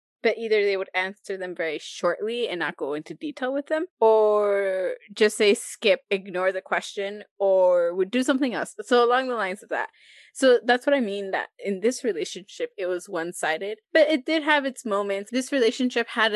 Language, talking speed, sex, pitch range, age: English, 200 wpm, female, 185-255 Hz, 20-39